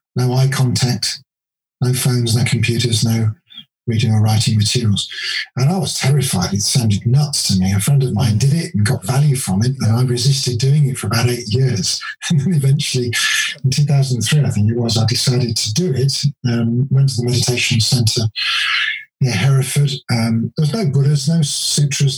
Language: English